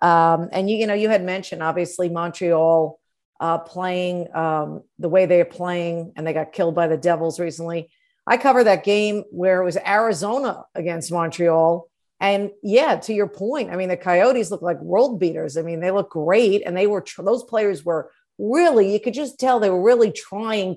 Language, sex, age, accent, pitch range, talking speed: English, female, 50-69, American, 170-210 Hz, 200 wpm